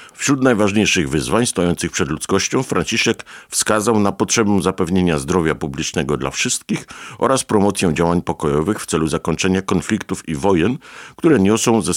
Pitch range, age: 85-110 Hz, 50-69